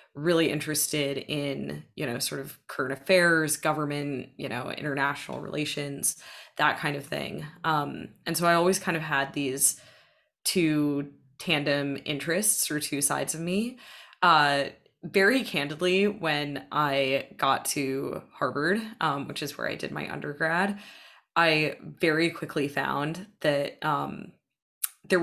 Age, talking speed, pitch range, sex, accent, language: 20-39, 140 wpm, 145-175 Hz, female, American, English